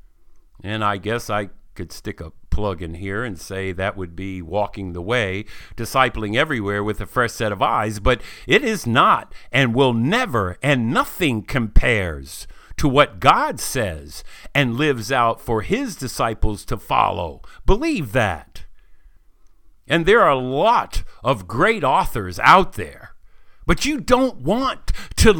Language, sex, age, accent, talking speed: English, male, 50-69, American, 155 wpm